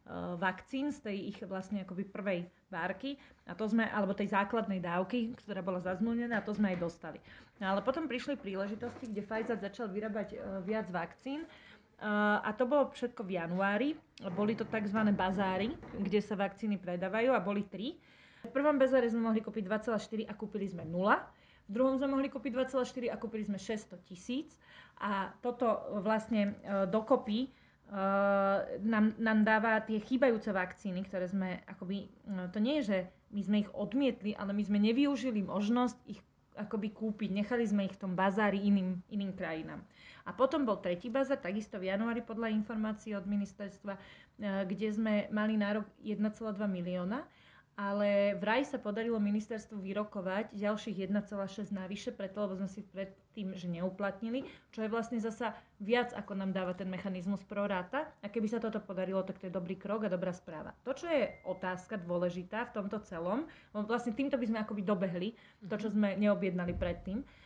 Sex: female